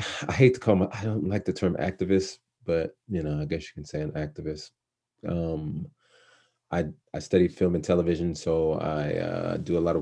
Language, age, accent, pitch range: English, 30-49, American, 85-95 Hz